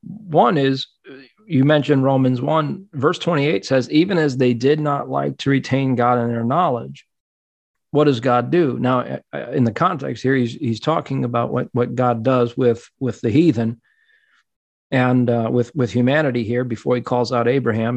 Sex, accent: male, American